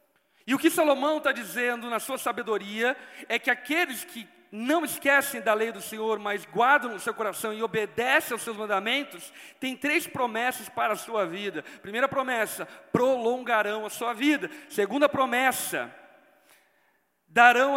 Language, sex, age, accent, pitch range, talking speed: Portuguese, male, 40-59, Brazilian, 185-250 Hz, 150 wpm